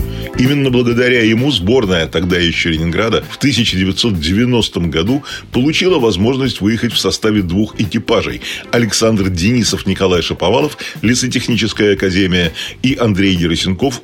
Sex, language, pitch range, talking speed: male, Russian, 90-120 Hz, 110 wpm